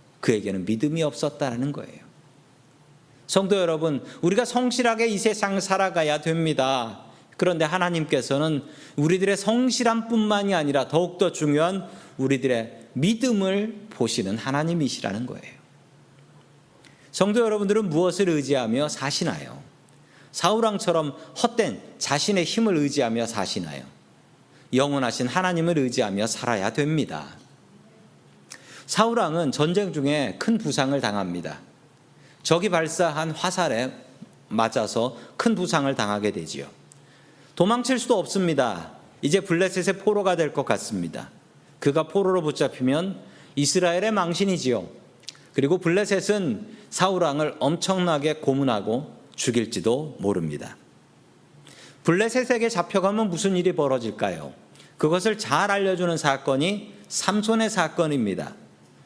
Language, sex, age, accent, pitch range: Korean, male, 40-59, native, 135-195 Hz